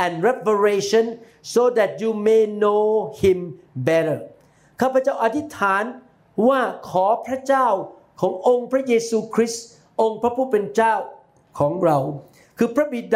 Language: Thai